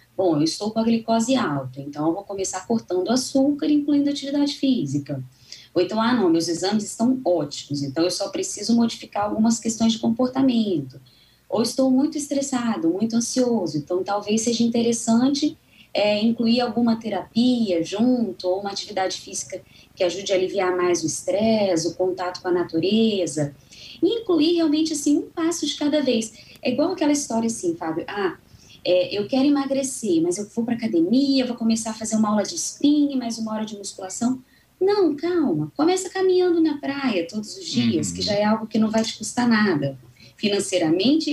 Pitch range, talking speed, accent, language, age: 195-290 Hz, 180 wpm, Brazilian, Portuguese, 20-39